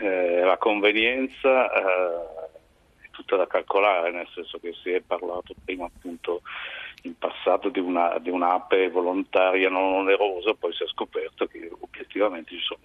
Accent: native